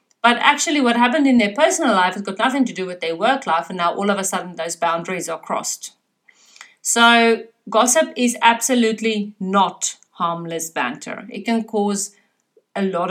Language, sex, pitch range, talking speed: English, female, 180-225 Hz, 180 wpm